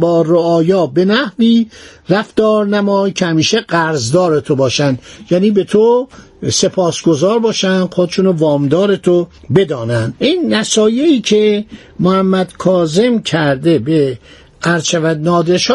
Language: Persian